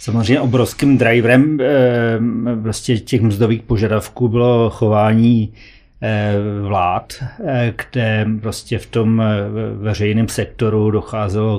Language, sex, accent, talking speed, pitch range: Czech, male, native, 80 wpm, 110-125 Hz